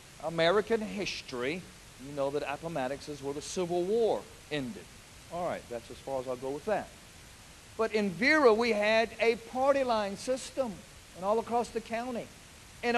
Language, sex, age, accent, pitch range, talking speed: English, male, 50-69, American, 175-230 Hz, 170 wpm